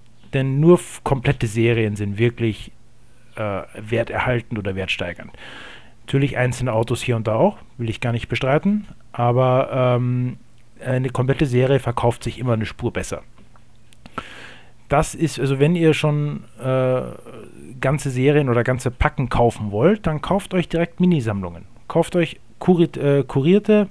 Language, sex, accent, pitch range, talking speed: German, male, German, 115-155 Hz, 140 wpm